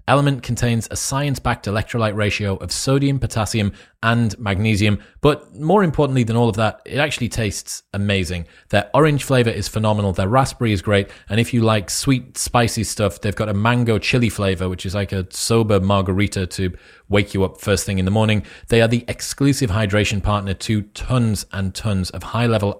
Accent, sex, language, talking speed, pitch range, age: British, male, English, 185 wpm, 100-120 Hz, 30-49